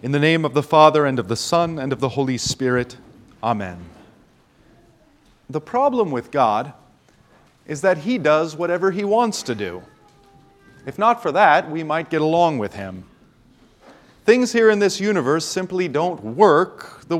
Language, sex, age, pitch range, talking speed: English, male, 40-59, 125-175 Hz, 170 wpm